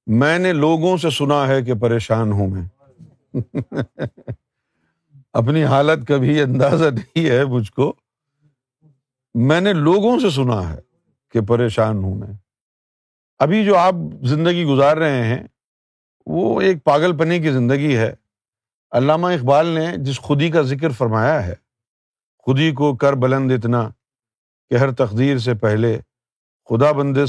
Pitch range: 125-175 Hz